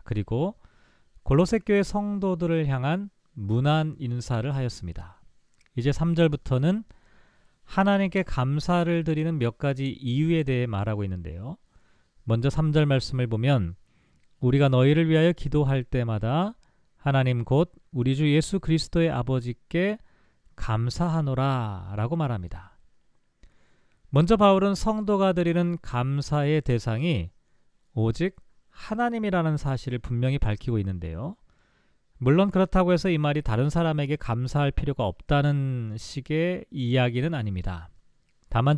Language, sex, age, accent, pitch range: Korean, male, 40-59, native, 120-170 Hz